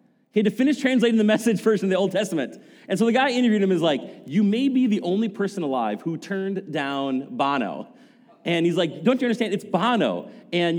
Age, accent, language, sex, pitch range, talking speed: 30-49, American, English, male, 150-225 Hz, 220 wpm